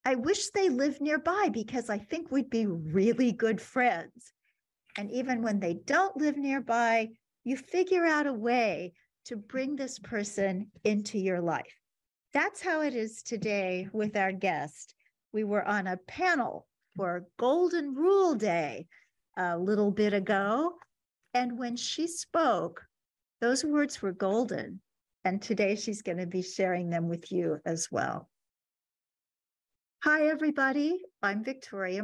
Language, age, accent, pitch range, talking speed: English, 50-69, American, 200-295 Hz, 145 wpm